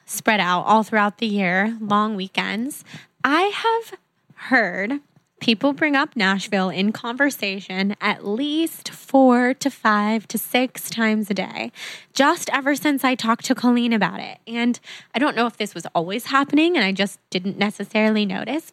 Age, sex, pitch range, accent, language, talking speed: 20-39, female, 205-255 Hz, American, English, 165 wpm